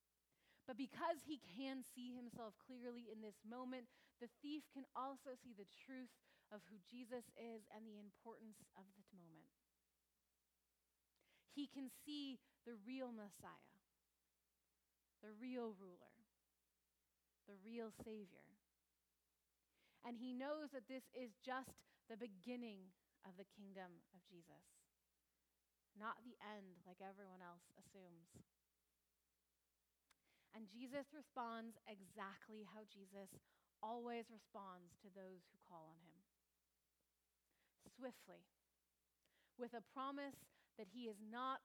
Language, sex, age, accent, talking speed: English, female, 30-49, American, 120 wpm